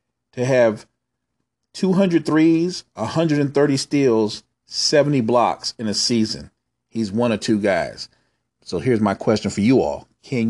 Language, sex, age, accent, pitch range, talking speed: English, male, 40-59, American, 110-140 Hz, 150 wpm